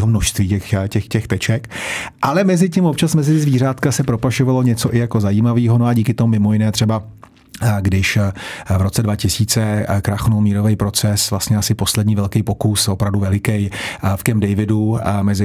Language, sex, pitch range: Czech, male, 100-110 Hz